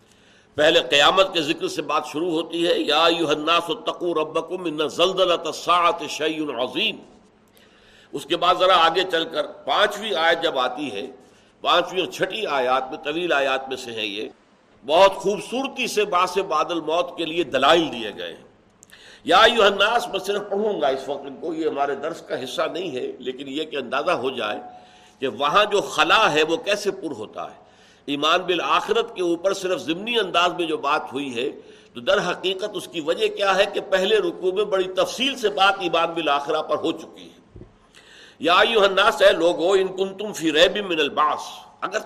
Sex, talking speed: male, 175 wpm